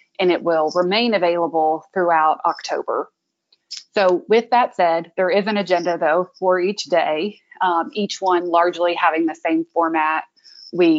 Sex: female